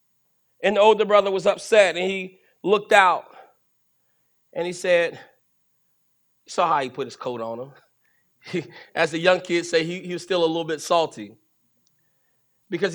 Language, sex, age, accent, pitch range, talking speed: English, male, 30-49, American, 155-195 Hz, 165 wpm